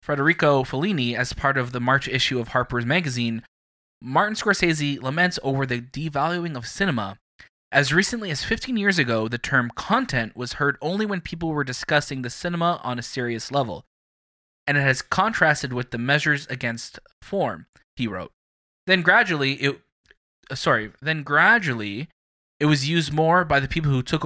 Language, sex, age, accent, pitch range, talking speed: English, male, 20-39, American, 120-155 Hz, 160 wpm